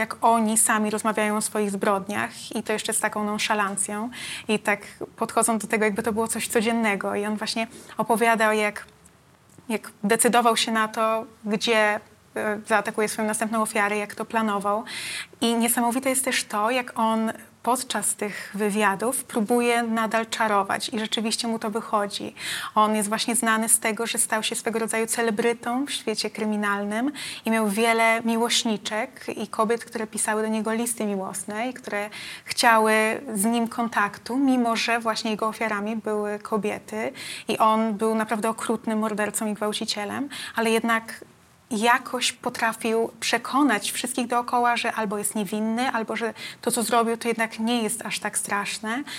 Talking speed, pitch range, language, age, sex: 160 wpm, 215-235 Hz, Polish, 20-39, female